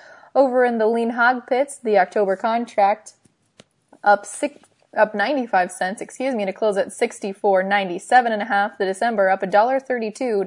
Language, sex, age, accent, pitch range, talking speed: English, female, 20-39, American, 195-250 Hz, 160 wpm